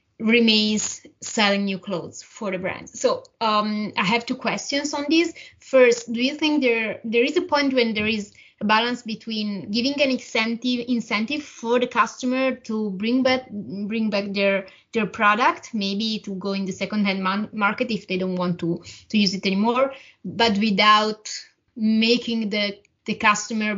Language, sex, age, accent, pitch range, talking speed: Italian, female, 20-39, native, 200-235 Hz, 170 wpm